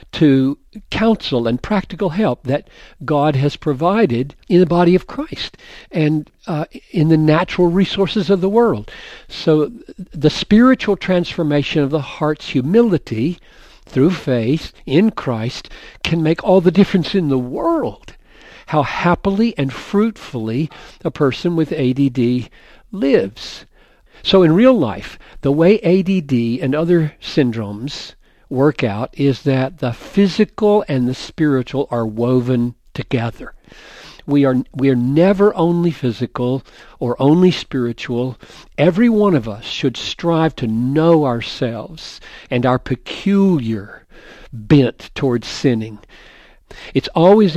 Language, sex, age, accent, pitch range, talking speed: English, male, 60-79, American, 125-185 Hz, 125 wpm